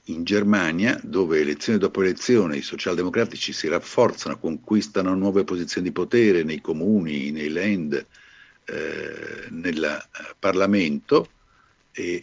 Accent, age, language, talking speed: native, 60-79, Italian, 120 wpm